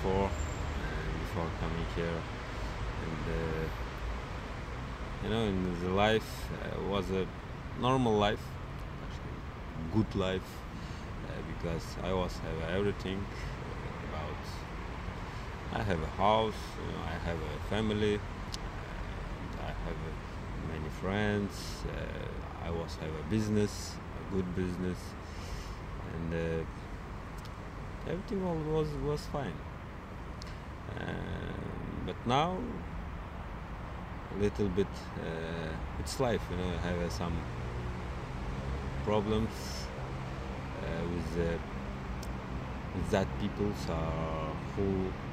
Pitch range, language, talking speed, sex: 80-100 Hz, French, 105 wpm, male